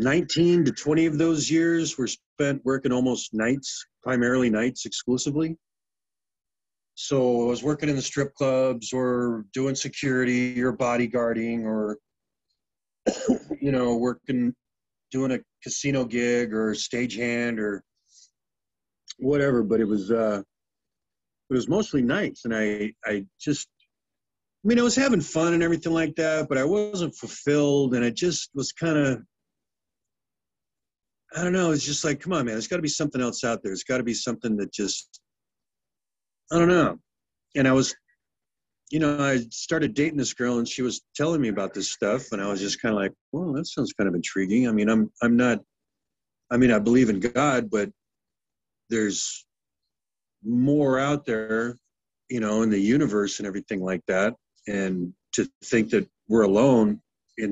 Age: 40-59